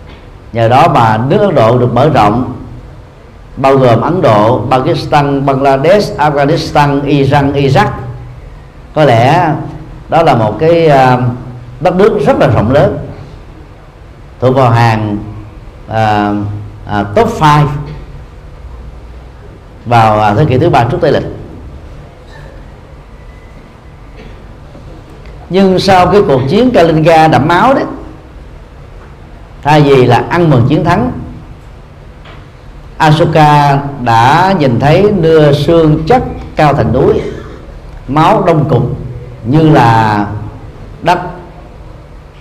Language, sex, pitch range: Vietnamese, male, 115-160 Hz